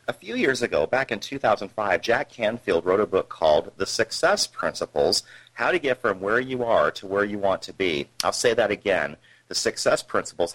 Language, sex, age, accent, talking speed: English, male, 40-59, American, 205 wpm